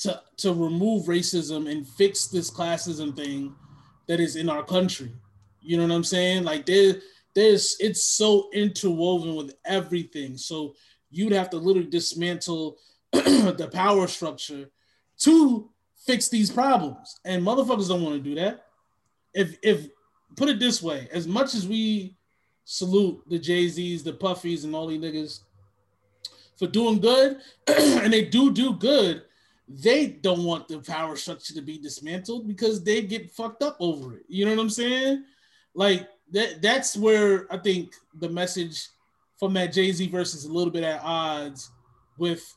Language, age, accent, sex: English, 20-39, American, male